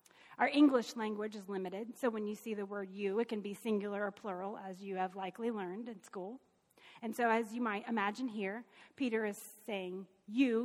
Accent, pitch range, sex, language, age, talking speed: American, 205-285 Hz, female, English, 30-49, 205 wpm